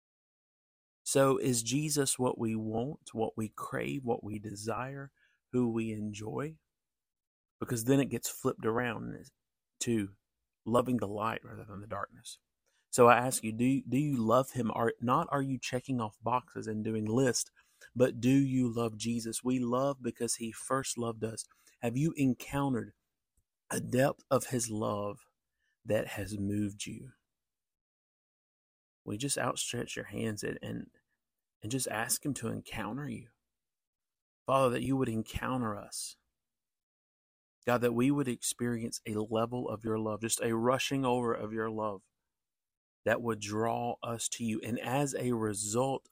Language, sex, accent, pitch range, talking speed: English, male, American, 110-125 Hz, 150 wpm